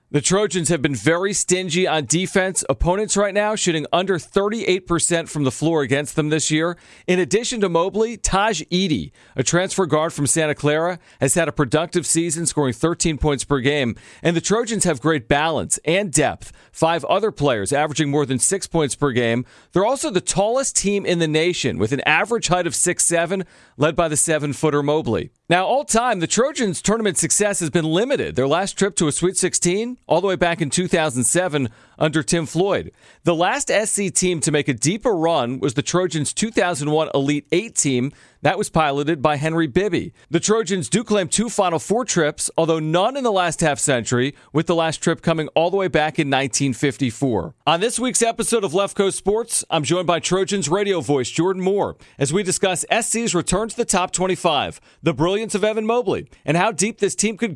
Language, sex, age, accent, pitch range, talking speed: English, male, 40-59, American, 150-195 Hz, 200 wpm